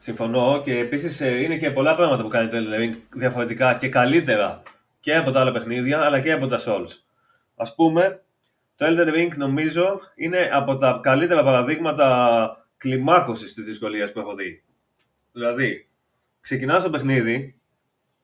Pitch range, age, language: 125-170 Hz, 30-49, Greek